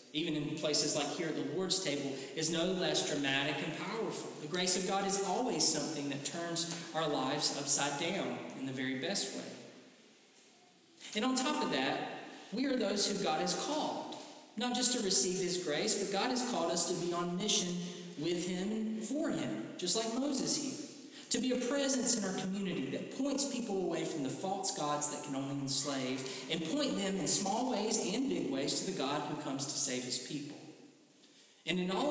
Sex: male